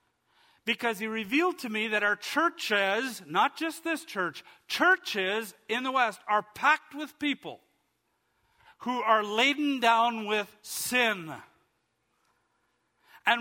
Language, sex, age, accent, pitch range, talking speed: English, male, 50-69, American, 215-305 Hz, 120 wpm